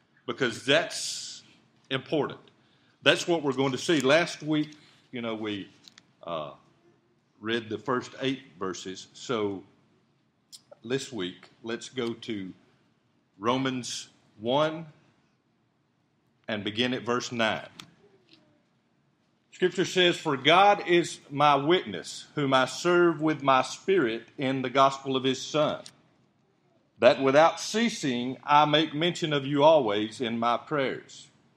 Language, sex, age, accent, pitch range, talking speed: English, male, 50-69, American, 120-150 Hz, 120 wpm